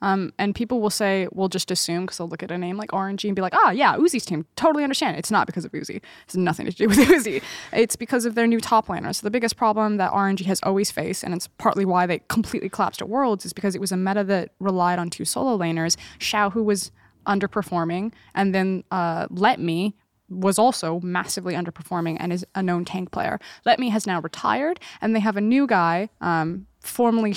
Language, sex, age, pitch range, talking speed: English, female, 10-29, 180-230 Hz, 230 wpm